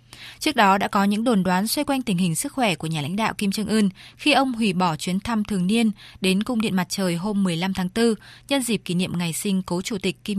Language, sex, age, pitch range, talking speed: Vietnamese, female, 20-39, 180-225 Hz, 270 wpm